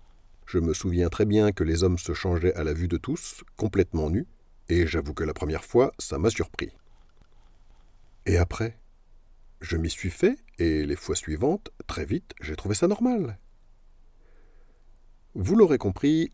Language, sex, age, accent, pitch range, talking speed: French, male, 50-69, French, 85-115 Hz, 165 wpm